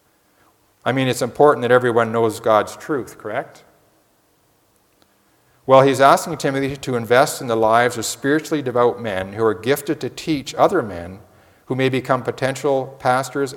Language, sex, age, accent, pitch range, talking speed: English, male, 50-69, American, 110-140 Hz, 155 wpm